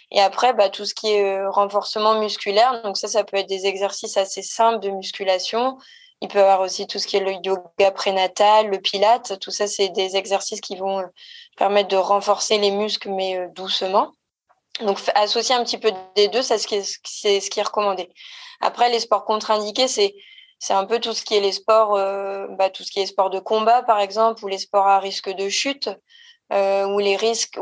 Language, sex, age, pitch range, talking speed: French, female, 20-39, 195-220 Hz, 215 wpm